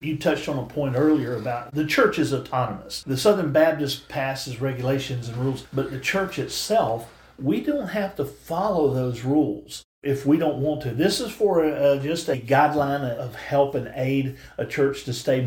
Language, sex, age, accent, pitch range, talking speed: English, male, 50-69, American, 135-165 Hz, 185 wpm